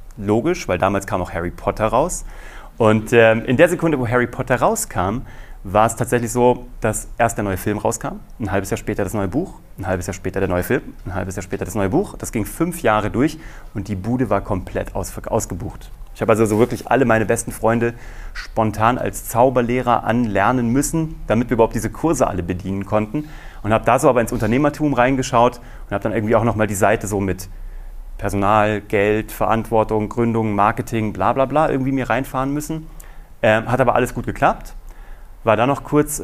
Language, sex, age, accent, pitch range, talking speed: German, male, 30-49, German, 100-130 Hz, 200 wpm